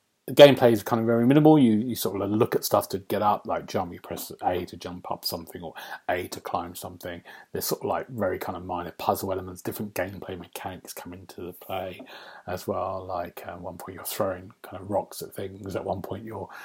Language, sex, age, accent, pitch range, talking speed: English, male, 40-59, British, 95-120 Hz, 240 wpm